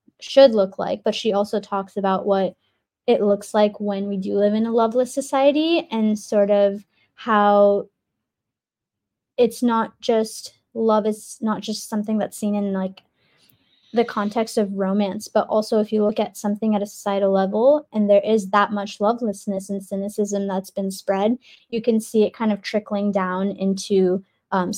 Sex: female